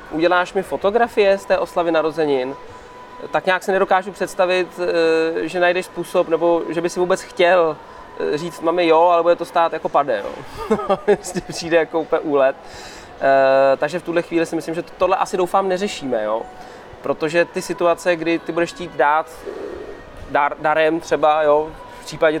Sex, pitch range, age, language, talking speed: male, 150-180 Hz, 20-39, Czech, 165 wpm